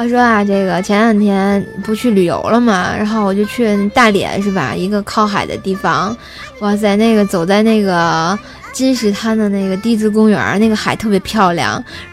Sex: female